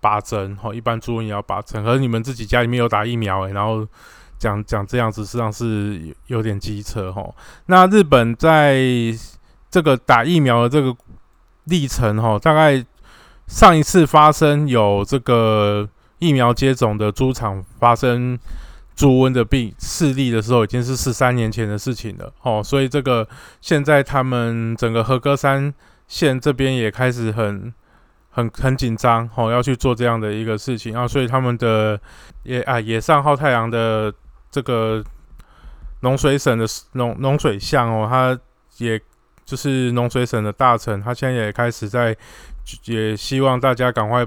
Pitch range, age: 110-130 Hz, 20-39